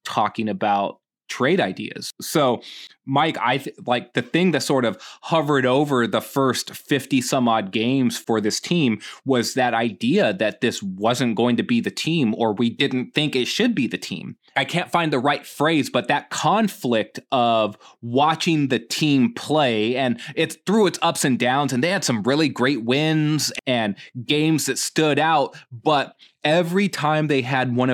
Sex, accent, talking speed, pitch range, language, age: male, American, 180 wpm, 120-155 Hz, English, 20-39